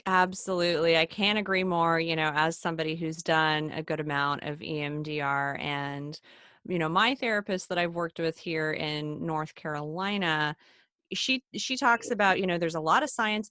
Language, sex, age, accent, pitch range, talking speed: English, female, 30-49, American, 155-190 Hz, 180 wpm